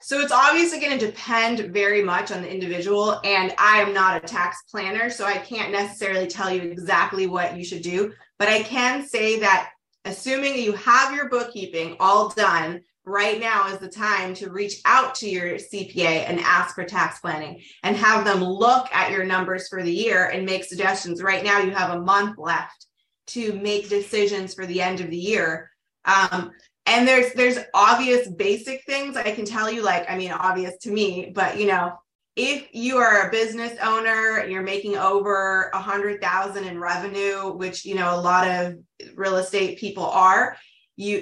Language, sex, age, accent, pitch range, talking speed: English, female, 20-39, American, 185-215 Hz, 185 wpm